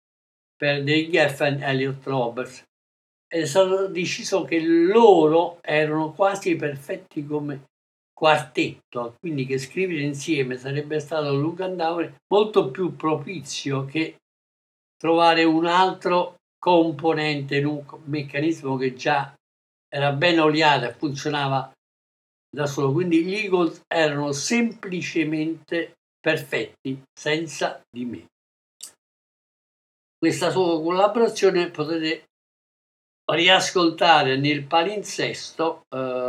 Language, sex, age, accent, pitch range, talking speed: Italian, male, 60-79, native, 135-170 Hz, 95 wpm